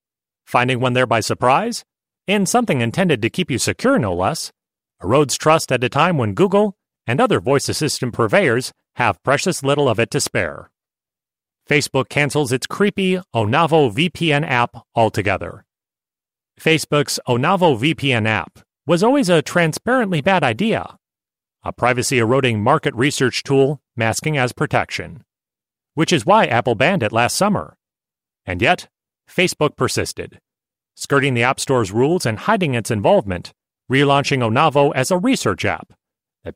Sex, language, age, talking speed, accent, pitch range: male, English, 40-59, 145 wpm, American, 120-165 Hz